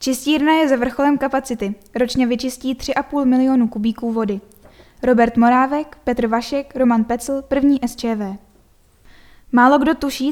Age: 10-29